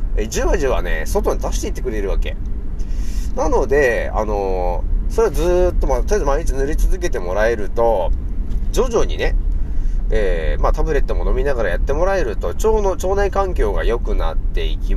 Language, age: Japanese, 30-49